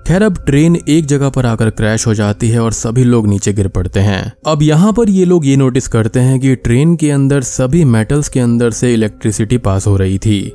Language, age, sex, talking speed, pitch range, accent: Hindi, 20-39, male, 235 wpm, 110-145 Hz, native